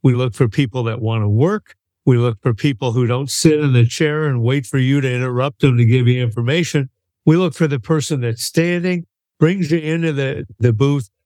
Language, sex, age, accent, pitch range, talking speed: English, male, 60-79, American, 120-150 Hz, 225 wpm